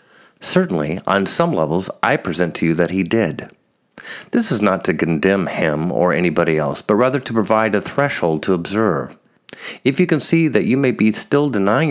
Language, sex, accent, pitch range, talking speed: English, male, American, 90-125 Hz, 190 wpm